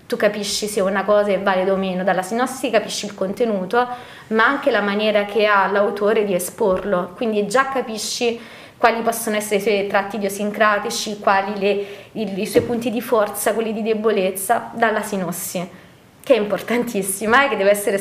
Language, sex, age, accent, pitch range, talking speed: Italian, female, 20-39, native, 195-225 Hz, 175 wpm